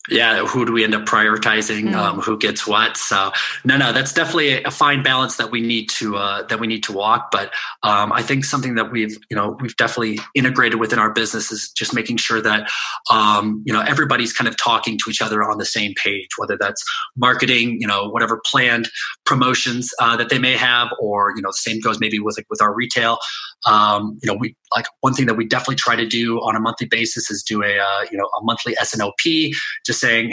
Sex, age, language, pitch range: male, 20-39, English, 110-130 Hz